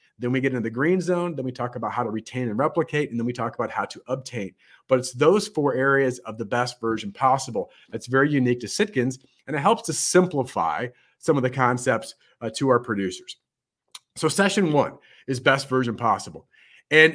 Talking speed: 210 wpm